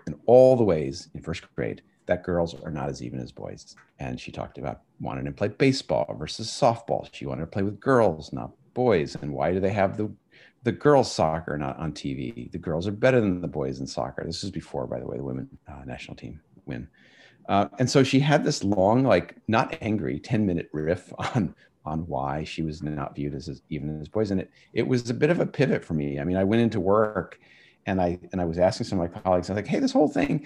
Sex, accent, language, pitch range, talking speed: male, American, English, 75-110 Hz, 245 wpm